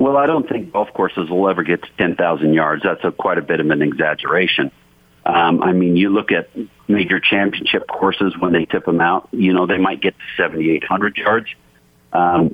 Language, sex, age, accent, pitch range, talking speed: English, male, 50-69, American, 80-100 Hz, 200 wpm